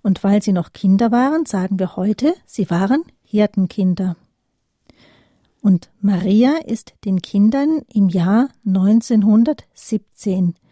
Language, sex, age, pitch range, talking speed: German, female, 40-59, 195-235 Hz, 110 wpm